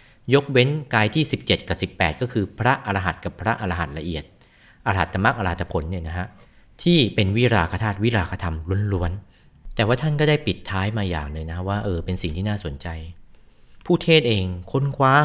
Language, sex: Thai, male